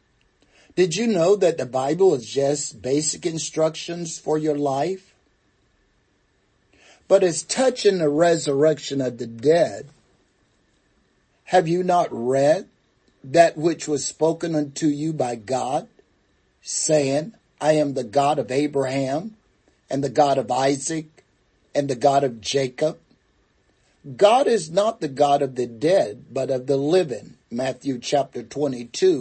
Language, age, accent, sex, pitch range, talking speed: English, 50-69, American, male, 130-185 Hz, 135 wpm